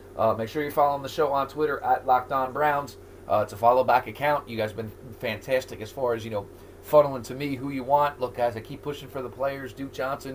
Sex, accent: male, American